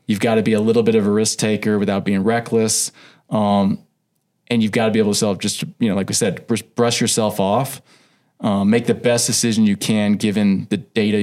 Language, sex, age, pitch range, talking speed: English, male, 20-39, 105-130 Hz, 225 wpm